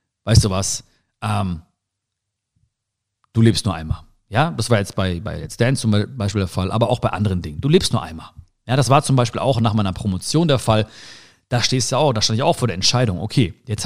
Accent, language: German, German